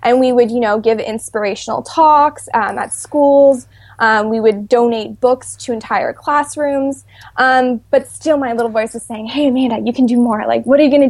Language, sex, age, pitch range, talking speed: English, female, 20-39, 220-275 Hz, 205 wpm